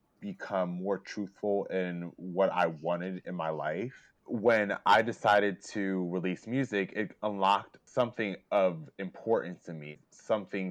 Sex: male